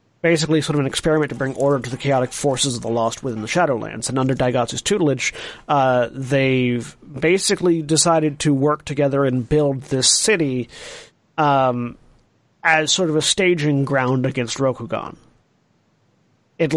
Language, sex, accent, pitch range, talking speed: English, male, American, 125-155 Hz, 155 wpm